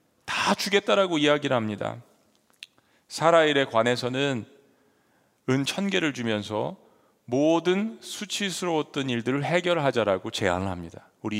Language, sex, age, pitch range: Korean, male, 40-59, 110-165 Hz